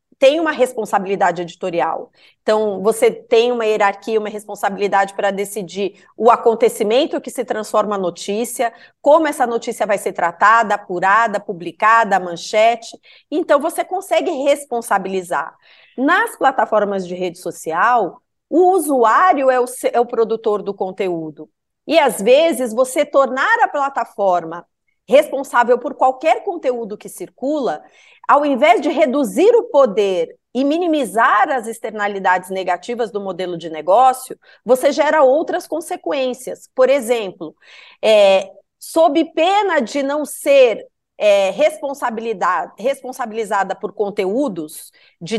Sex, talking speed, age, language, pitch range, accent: female, 120 wpm, 30-49, Portuguese, 205-285 Hz, Brazilian